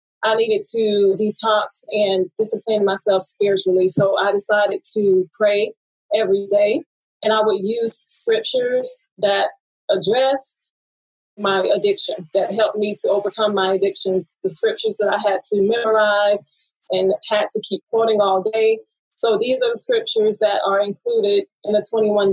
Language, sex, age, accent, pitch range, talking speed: English, female, 30-49, American, 205-260 Hz, 150 wpm